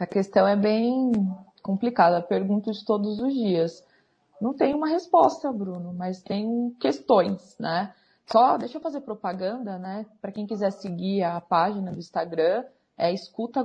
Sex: female